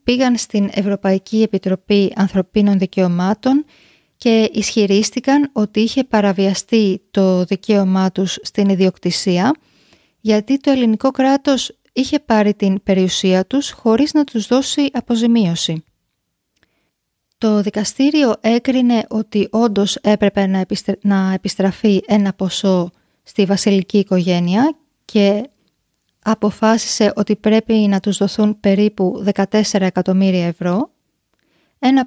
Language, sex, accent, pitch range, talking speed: Greek, female, native, 195-230 Hz, 105 wpm